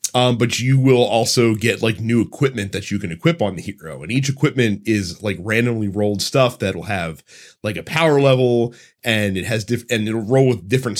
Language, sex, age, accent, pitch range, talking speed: English, male, 30-49, American, 105-130 Hz, 215 wpm